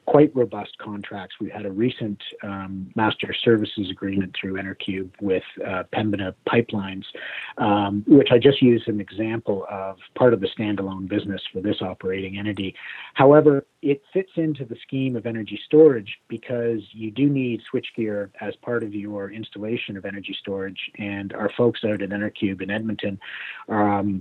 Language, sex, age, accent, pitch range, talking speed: English, male, 30-49, American, 100-120 Hz, 160 wpm